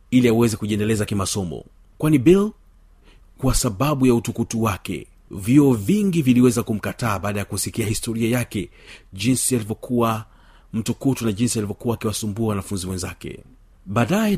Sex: male